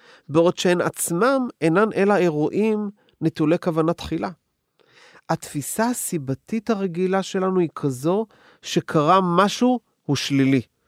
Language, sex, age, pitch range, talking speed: Hebrew, male, 40-59, 145-210 Hz, 105 wpm